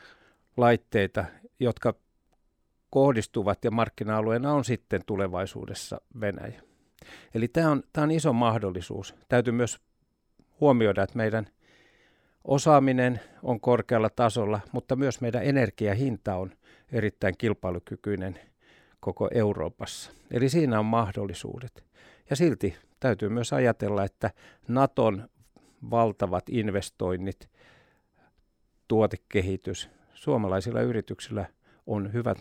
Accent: native